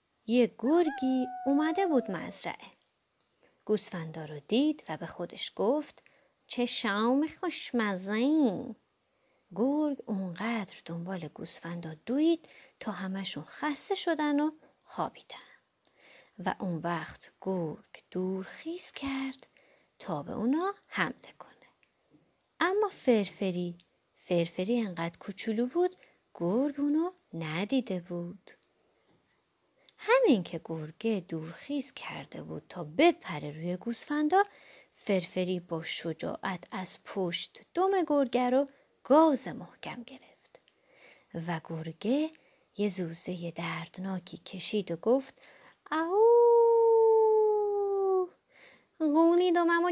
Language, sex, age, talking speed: Persian, female, 30-49, 95 wpm